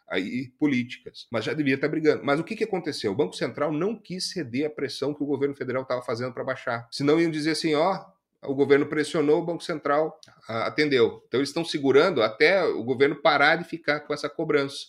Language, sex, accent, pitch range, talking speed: Portuguese, male, Brazilian, 110-155 Hz, 215 wpm